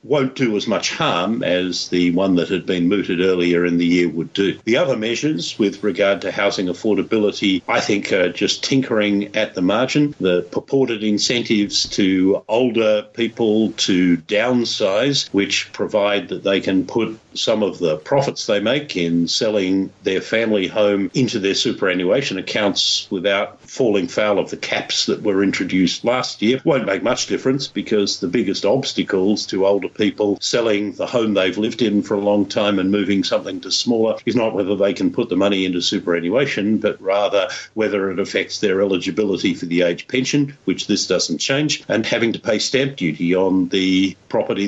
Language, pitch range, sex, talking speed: English, 95-115 Hz, male, 180 wpm